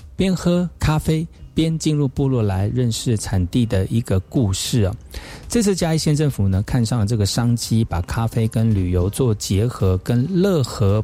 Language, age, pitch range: Chinese, 50-69, 105-140 Hz